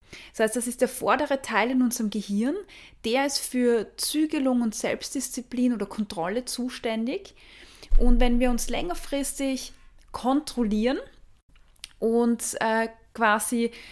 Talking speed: 115 wpm